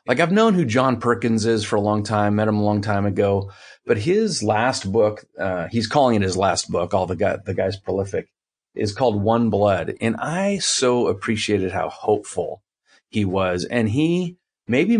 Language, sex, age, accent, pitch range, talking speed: English, male, 30-49, American, 95-115 Hz, 195 wpm